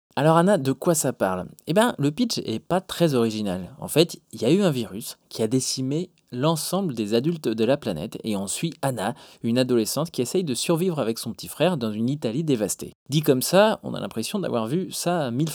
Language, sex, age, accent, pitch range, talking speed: French, male, 20-39, French, 110-155 Hz, 230 wpm